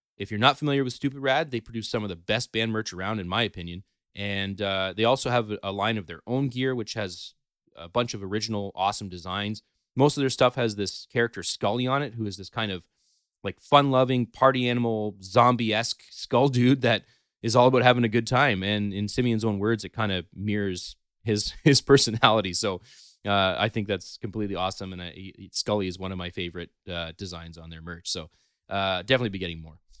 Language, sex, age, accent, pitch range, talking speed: English, male, 30-49, American, 95-125 Hz, 210 wpm